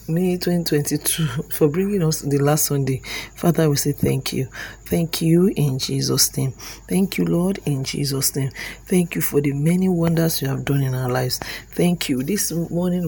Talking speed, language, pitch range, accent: 190 wpm, English, 140-170 Hz, Nigerian